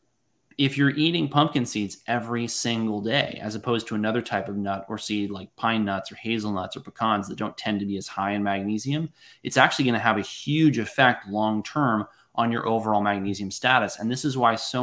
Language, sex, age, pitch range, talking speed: English, male, 20-39, 100-120 Hz, 215 wpm